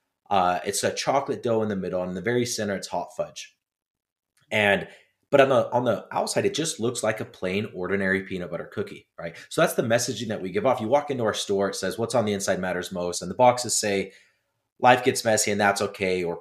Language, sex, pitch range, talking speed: English, male, 95-125 Hz, 240 wpm